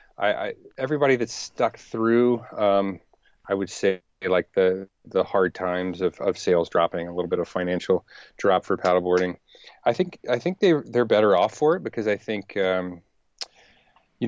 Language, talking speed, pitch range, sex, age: English, 175 wpm, 95-115 Hz, male, 30-49